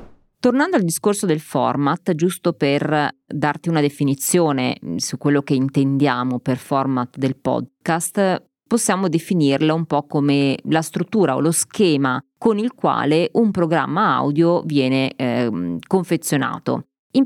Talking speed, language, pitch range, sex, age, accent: 130 wpm, Italian, 140-170 Hz, female, 20-39, native